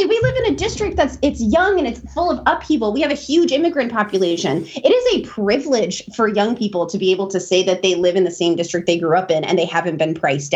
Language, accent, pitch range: English, American, 185-260 Hz